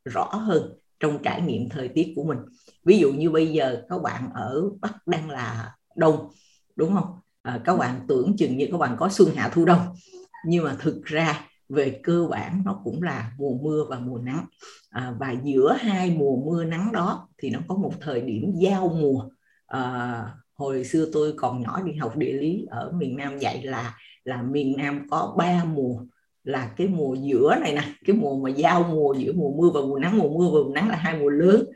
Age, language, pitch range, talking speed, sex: 50-69, Vietnamese, 135-185 Hz, 215 wpm, female